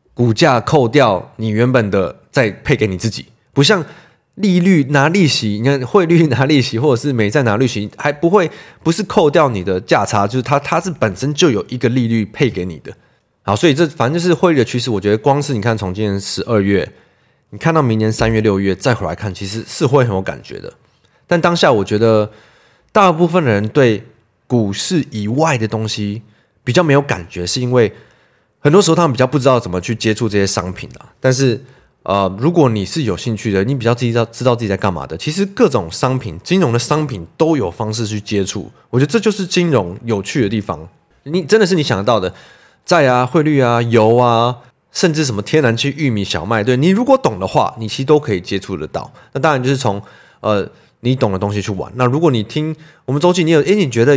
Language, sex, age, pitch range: Chinese, male, 20-39, 105-150 Hz